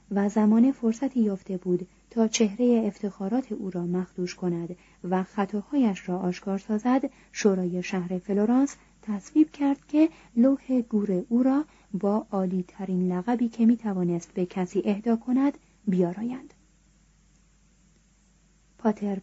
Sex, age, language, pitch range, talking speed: female, 30-49, Persian, 185-230 Hz, 120 wpm